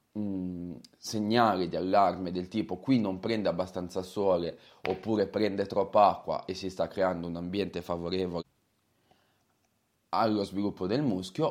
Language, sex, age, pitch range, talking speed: Italian, male, 30-49, 95-115 Hz, 130 wpm